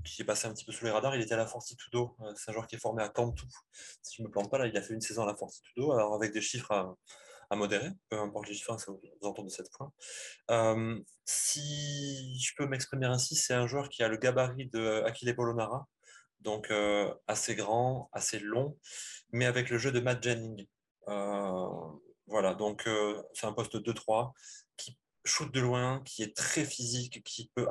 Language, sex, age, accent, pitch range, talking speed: French, male, 20-39, French, 110-130 Hz, 220 wpm